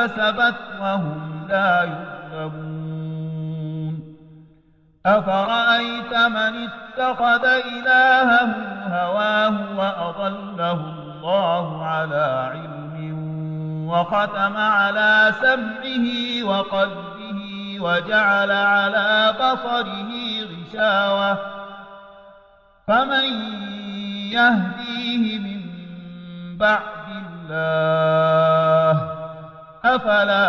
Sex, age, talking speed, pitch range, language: male, 50-69, 50 wpm, 160-215 Hz, English